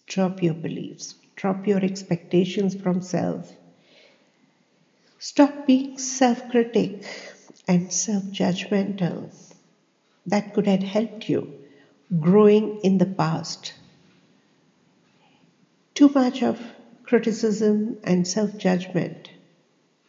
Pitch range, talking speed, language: 165-205 Hz, 85 wpm, English